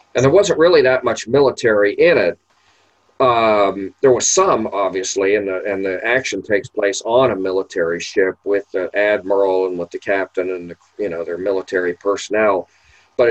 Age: 50-69